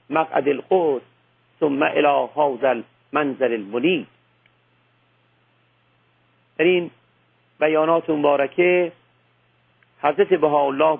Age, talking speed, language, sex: 50-69, 60 wpm, Persian, male